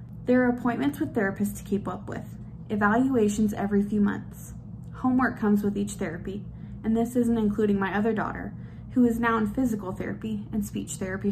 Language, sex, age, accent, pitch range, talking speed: English, female, 20-39, American, 200-245 Hz, 180 wpm